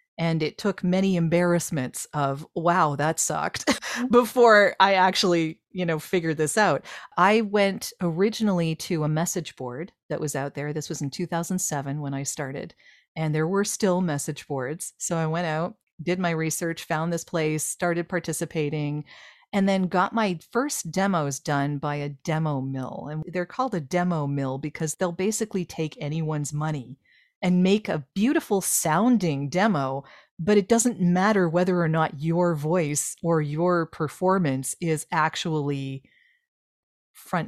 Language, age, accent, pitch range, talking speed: English, 40-59, American, 155-210 Hz, 155 wpm